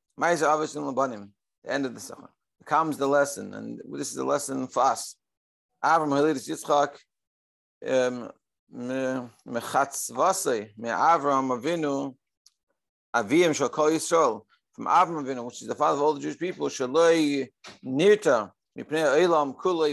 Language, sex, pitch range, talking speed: English, male, 125-155 Hz, 125 wpm